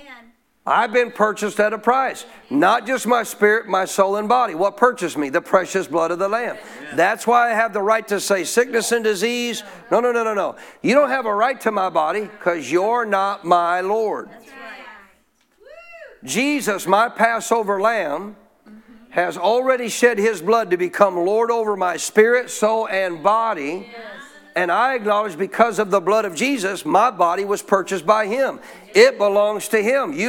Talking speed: 180 wpm